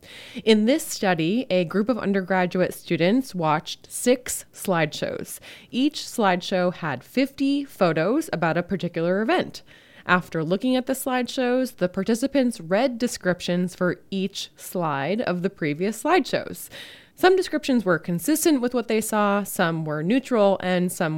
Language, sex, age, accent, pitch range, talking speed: English, female, 20-39, American, 175-245 Hz, 140 wpm